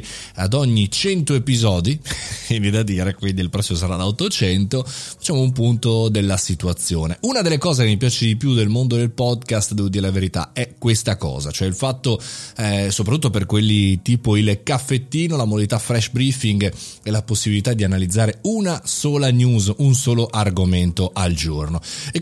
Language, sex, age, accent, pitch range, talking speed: Italian, male, 30-49, native, 95-125 Hz, 180 wpm